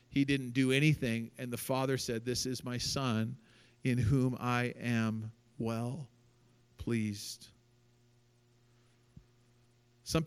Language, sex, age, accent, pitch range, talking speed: English, male, 40-59, American, 120-135 Hz, 110 wpm